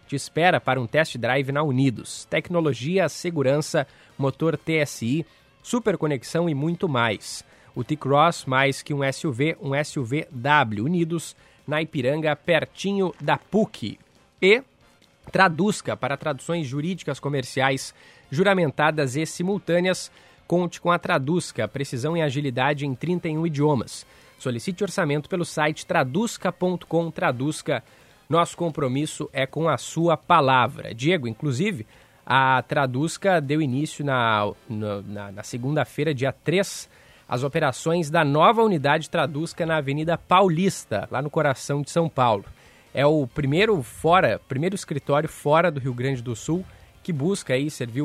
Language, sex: Portuguese, male